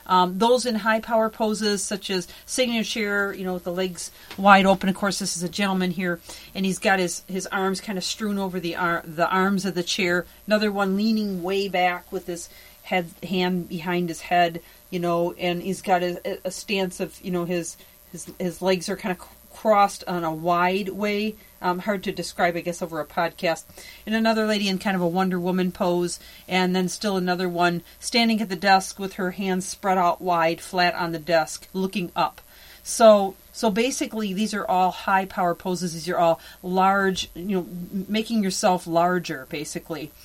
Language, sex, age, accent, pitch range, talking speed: English, female, 40-59, American, 175-200 Hz, 200 wpm